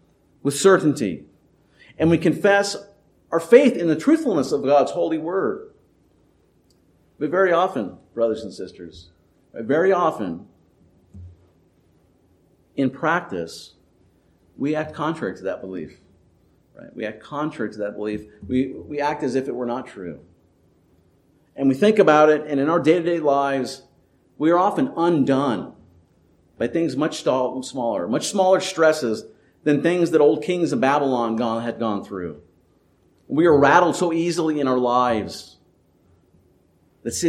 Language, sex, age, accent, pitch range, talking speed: English, male, 50-69, American, 105-155 Hz, 140 wpm